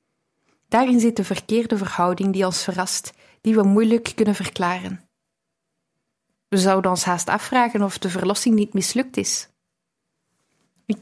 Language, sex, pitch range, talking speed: Dutch, female, 190-220 Hz, 135 wpm